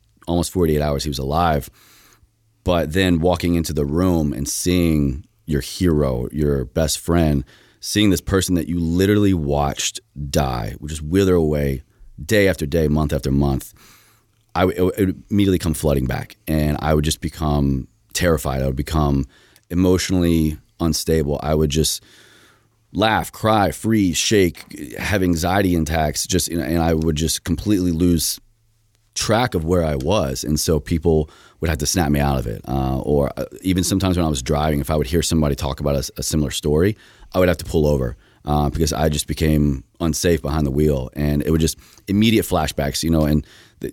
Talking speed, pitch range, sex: 180 wpm, 75-95 Hz, male